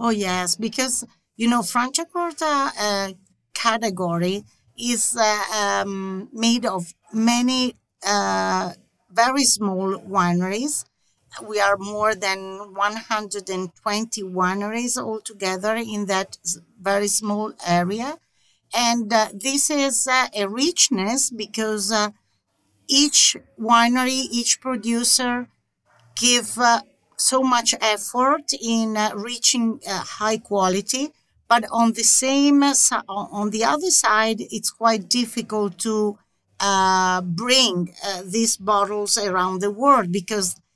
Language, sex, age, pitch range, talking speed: English, female, 50-69, 200-240 Hz, 115 wpm